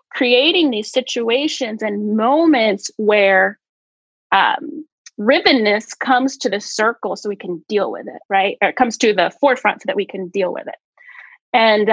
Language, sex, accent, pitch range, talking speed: English, female, American, 205-275 Hz, 160 wpm